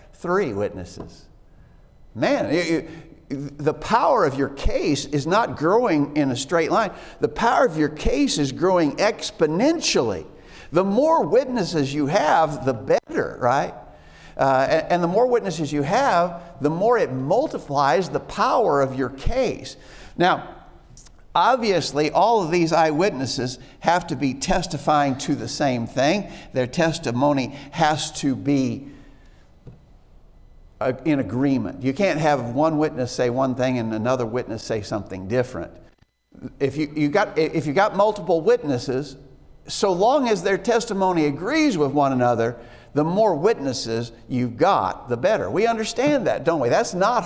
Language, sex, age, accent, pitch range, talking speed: English, male, 60-79, American, 130-175 Hz, 145 wpm